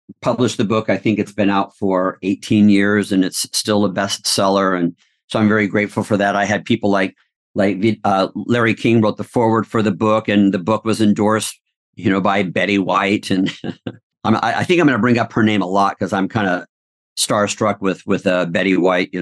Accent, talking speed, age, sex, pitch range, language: American, 220 wpm, 50-69, male, 100-125 Hz, English